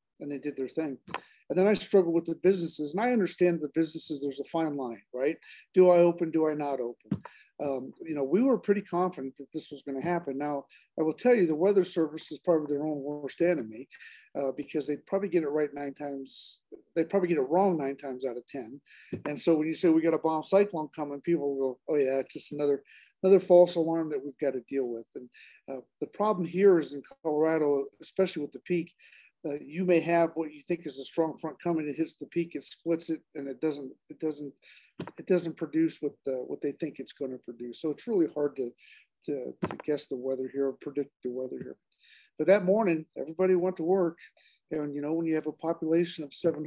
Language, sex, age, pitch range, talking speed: English, male, 50-69, 140-175 Hz, 235 wpm